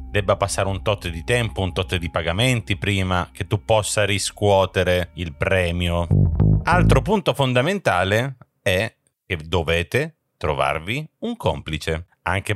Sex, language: male, Italian